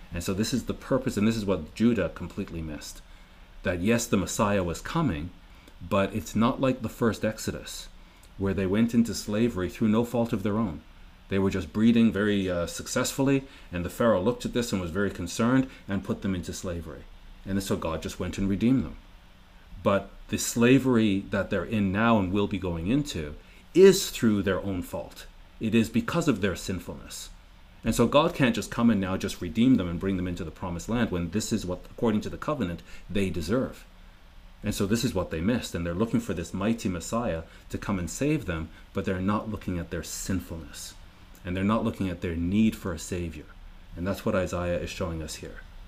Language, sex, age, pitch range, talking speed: English, male, 40-59, 90-110 Hz, 210 wpm